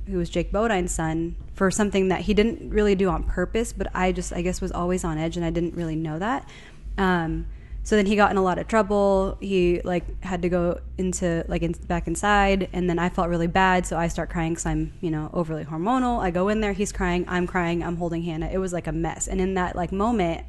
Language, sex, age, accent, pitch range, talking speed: English, female, 20-39, American, 170-195 Hz, 250 wpm